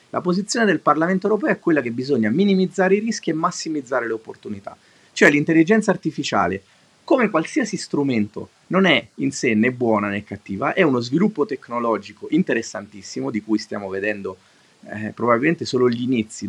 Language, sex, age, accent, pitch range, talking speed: Italian, male, 30-49, native, 120-180 Hz, 160 wpm